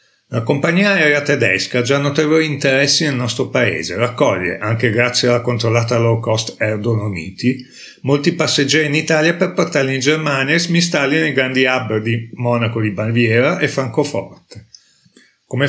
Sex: male